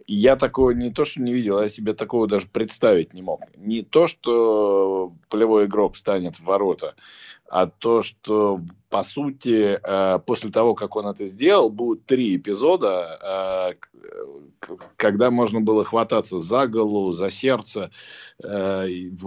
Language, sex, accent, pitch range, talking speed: Russian, male, native, 95-120 Hz, 135 wpm